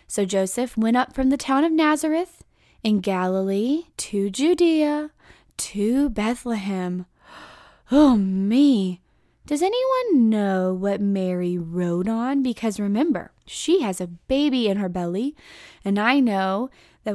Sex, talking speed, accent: female, 130 wpm, American